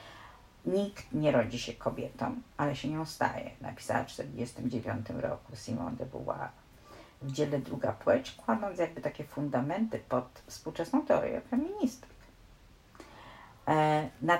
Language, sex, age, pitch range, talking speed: Polish, female, 50-69, 135-200 Hz, 120 wpm